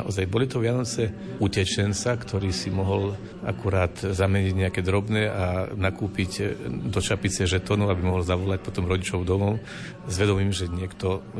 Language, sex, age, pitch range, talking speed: Slovak, male, 50-69, 95-105 Hz, 145 wpm